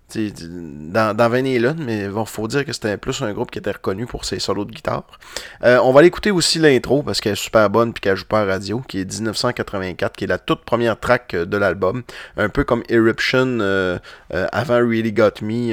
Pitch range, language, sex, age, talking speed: 105-130 Hz, French, male, 30-49, 230 wpm